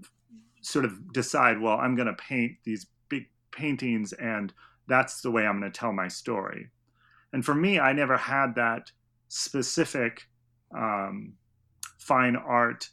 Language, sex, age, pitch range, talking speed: English, male, 30-49, 110-125 Hz, 150 wpm